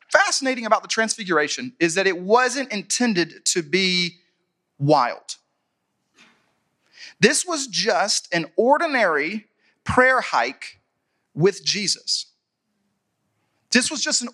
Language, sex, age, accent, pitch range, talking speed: English, male, 30-49, American, 170-225 Hz, 105 wpm